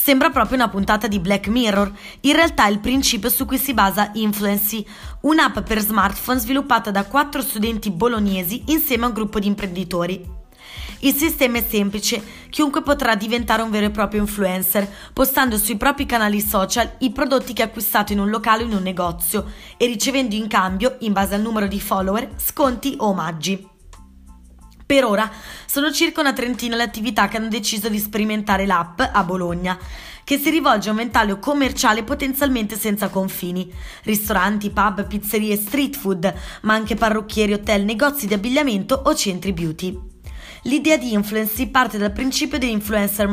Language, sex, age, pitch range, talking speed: Italian, female, 20-39, 200-250 Hz, 170 wpm